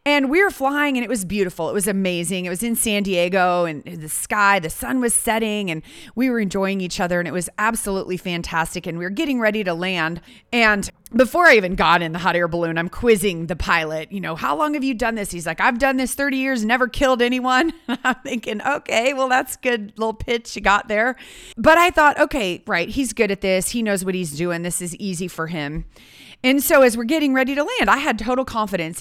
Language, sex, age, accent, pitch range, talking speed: English, female, 30-49, American, 185-260 Hz, 240 wpm